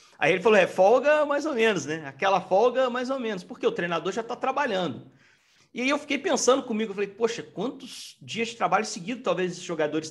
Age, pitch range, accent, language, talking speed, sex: 40-59, 160-245 Hz, Brazilian, Portuguese, 220 wpm, male